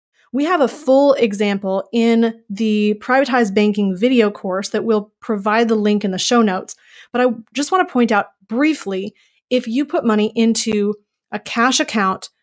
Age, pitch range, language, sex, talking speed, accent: 30-49, 210-250 Hz, English, female, 175 wpm, American